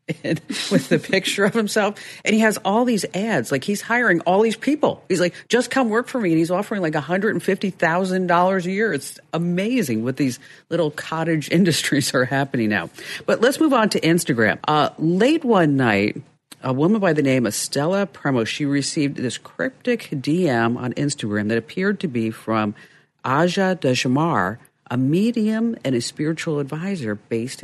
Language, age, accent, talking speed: English, 50-69, American, 185 wpm